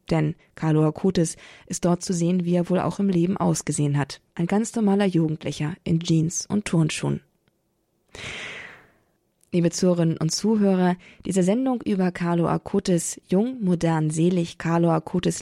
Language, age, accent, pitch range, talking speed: German, 20-39, German, 165-190 Hz, 145 wpm